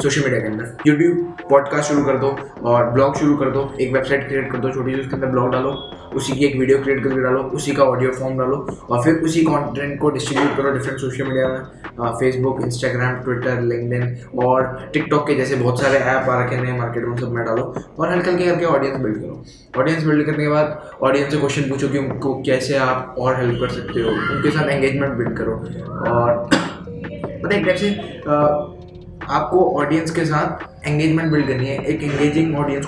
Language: Hindi